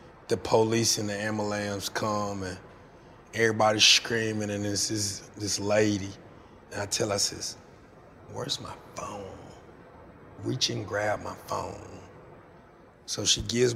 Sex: male